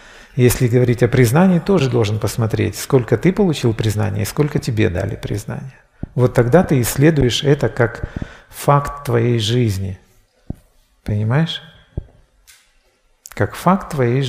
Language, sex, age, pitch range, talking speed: Russian, male, 40-59, 110-150 Hz, 120 wpm